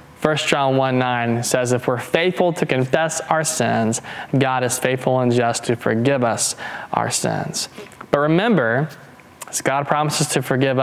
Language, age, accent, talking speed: English, 20-39, American, 155 wpm